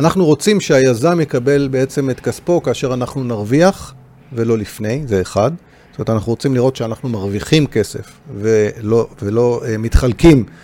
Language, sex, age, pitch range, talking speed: Hebrew, male, 40-59, 105-135 Hz, 140 wpm